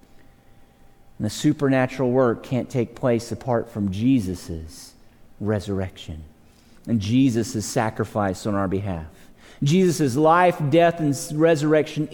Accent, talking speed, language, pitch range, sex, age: American, 110 wpm, English, 115-165 Hz, male, 40-59